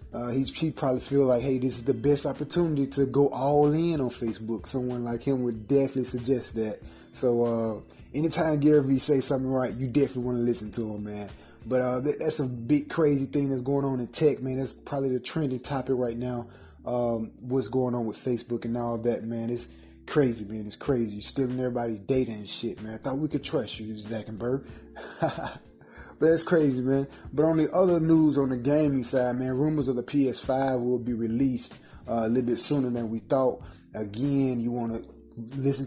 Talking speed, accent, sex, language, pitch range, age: 210 wpm, American, male, English, 115-140 Hz, 20-39